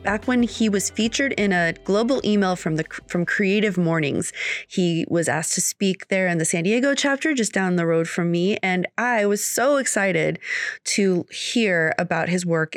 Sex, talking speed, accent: female, 195 wpm, American